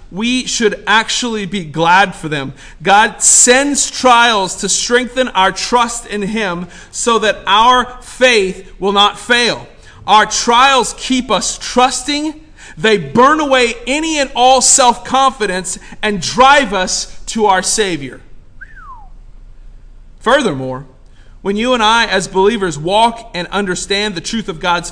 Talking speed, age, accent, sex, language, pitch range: 130 wpm, 40-59, American, male, English, 195-255 Hz